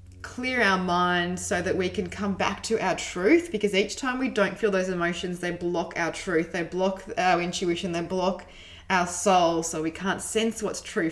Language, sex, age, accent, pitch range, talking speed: English, female, 20-39, Australian, 175-220 Hz, 205 wpm